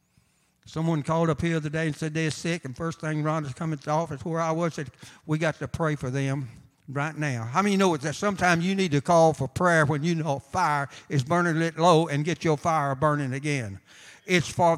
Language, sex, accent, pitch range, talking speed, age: English, male, American, 120-160 Hz, 250 wpm, 60-79